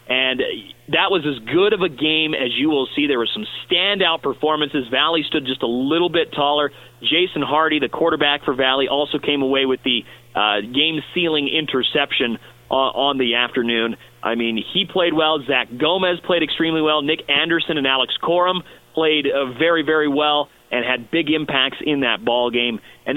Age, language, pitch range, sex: 30-49, English, 130-160 Hz, male